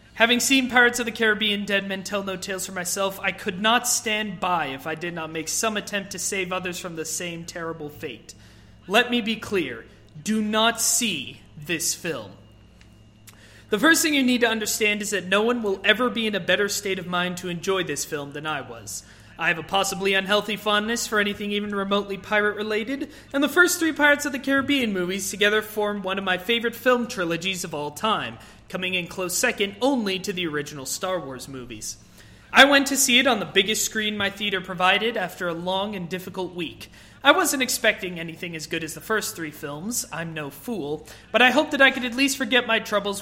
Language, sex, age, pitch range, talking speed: English, male, 30-49, 170-225 Hz, 215 wpm